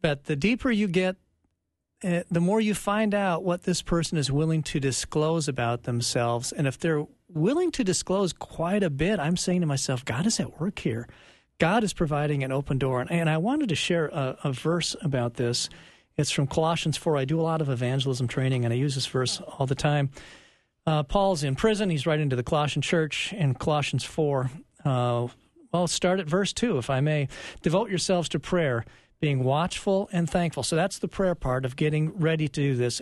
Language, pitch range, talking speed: English, 130-175 Hz, 205 wpm